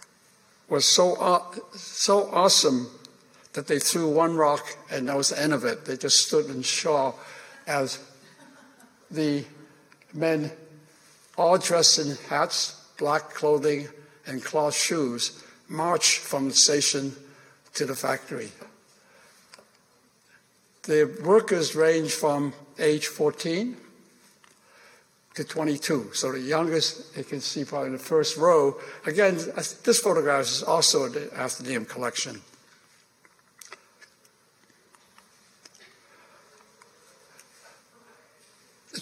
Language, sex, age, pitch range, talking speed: English, male, 60-79, 145-185 Hz, 105 wpm